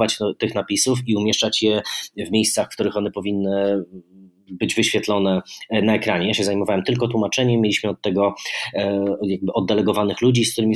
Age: 30-49